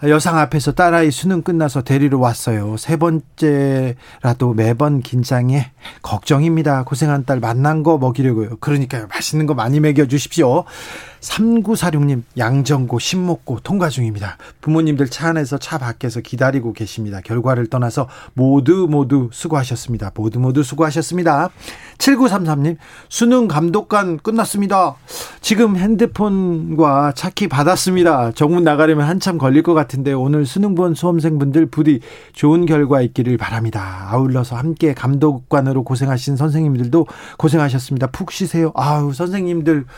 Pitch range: 130-170 Hz